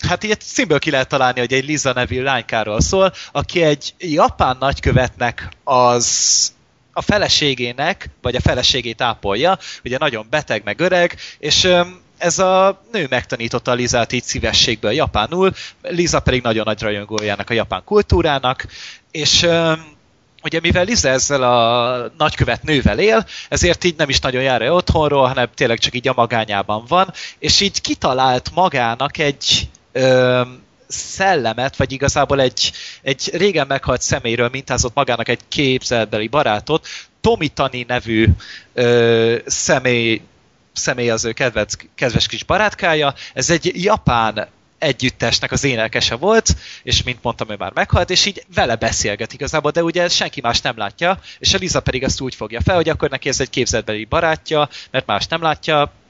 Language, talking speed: Hungarian, 150 wpm